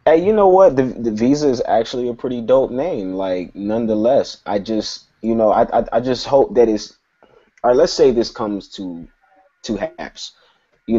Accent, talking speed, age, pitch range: American, 190 wpm, 20-39, 100-120 Hz